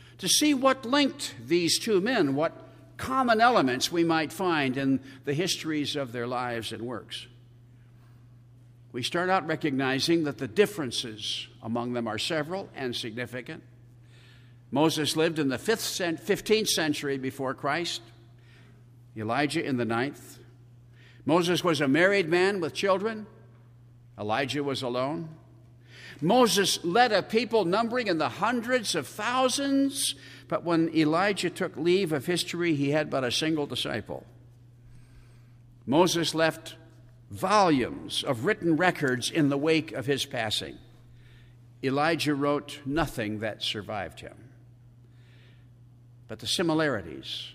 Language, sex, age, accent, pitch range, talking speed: English, male, 60-79, American, 120-165 Hz, 125 wpm